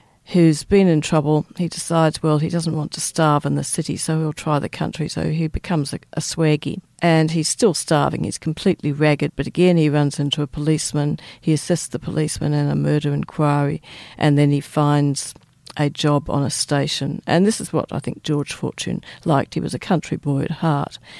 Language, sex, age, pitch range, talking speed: English, female, 50-69, 145-165 Hz, 205 wpm